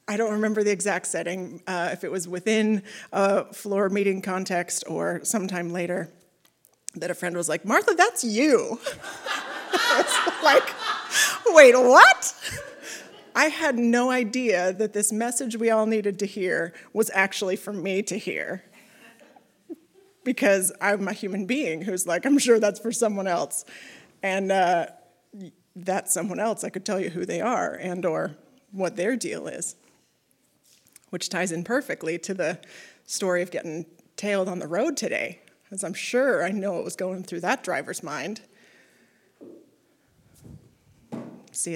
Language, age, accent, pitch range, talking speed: English, 30-49, American, 180-220 Hz, 150 wpm